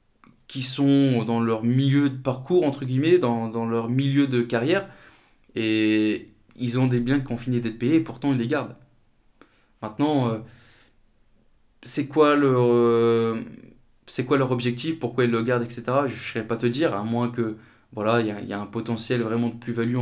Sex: male